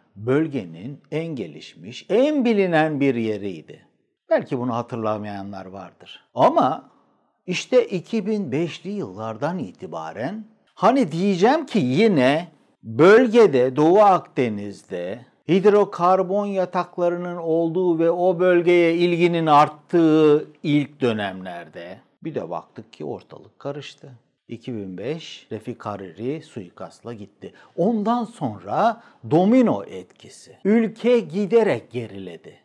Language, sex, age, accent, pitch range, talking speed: Turkish, male, 60-79, native, 110-180 Hz, 95 wpm